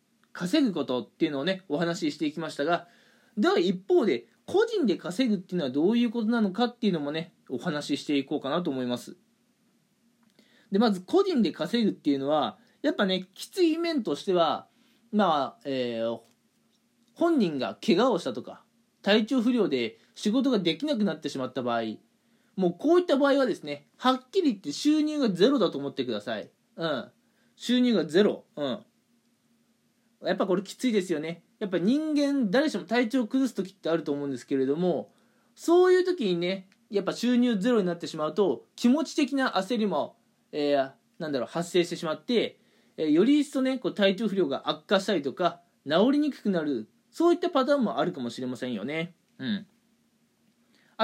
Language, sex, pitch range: Japanese, male, 165-245 Hz